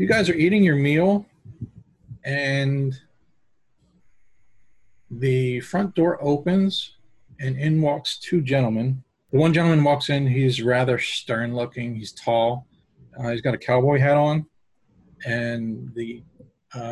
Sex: male